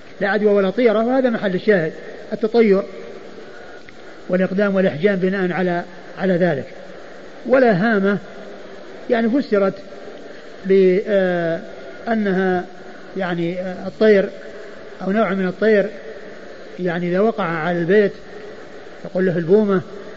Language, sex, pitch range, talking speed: Arabic, male, 185-210 Hz, 100 wpm